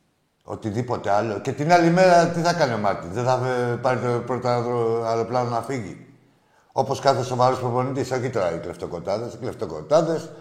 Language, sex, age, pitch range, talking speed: Greek, male, 60-79, 115-175 Hz, 150 wpm